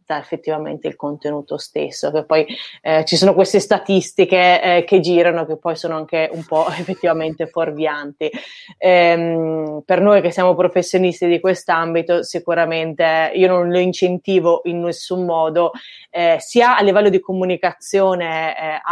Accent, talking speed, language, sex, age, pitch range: native, 145 wpm, Italian, female, 20-39, 160-185 Hz